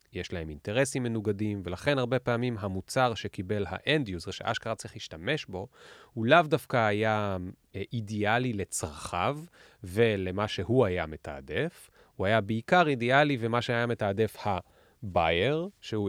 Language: Hebrew